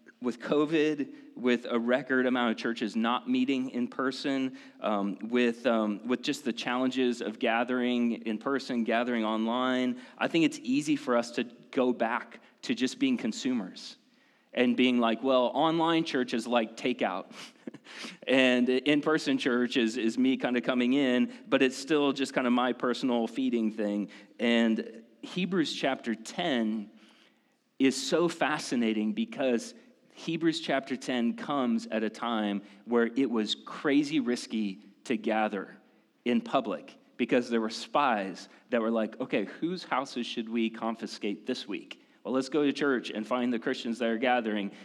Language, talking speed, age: English, 160 wpm, 30-49